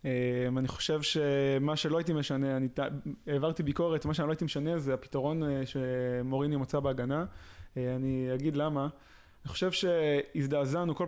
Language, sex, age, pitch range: Hebrew, male, 20-39, 135-165 Hz